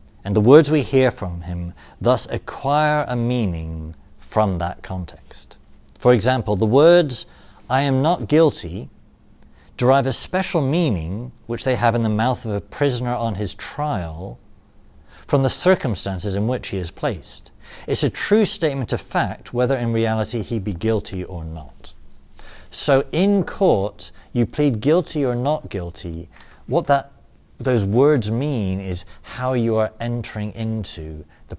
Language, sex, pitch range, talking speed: English, male, 85-130 Hz, 155 wpm